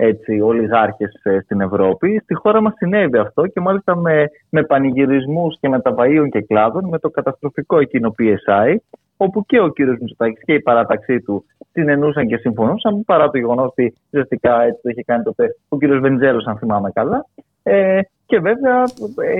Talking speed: 185 wpm